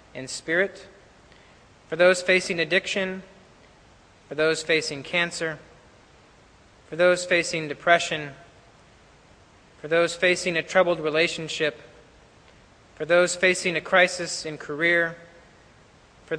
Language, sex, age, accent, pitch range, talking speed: English, male, 30-49, American, 155-185 Hz, 105 wpm